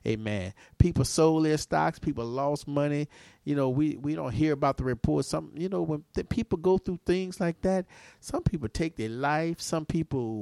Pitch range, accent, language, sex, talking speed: 125-155 Hz, American, English, male, 195 wpm